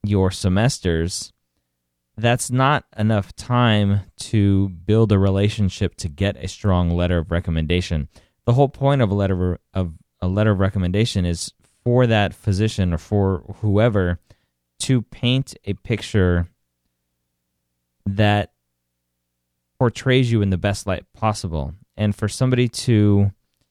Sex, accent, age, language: male, American, 30-49, English